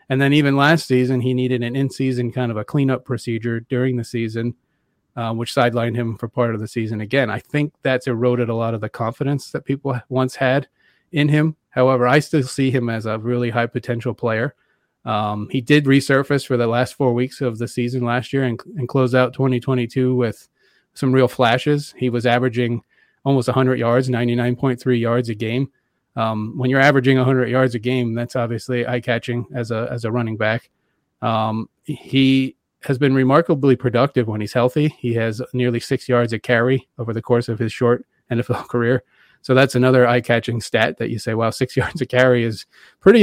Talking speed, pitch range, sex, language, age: 195 wpm, 115-130 Hz, male, English, 30-49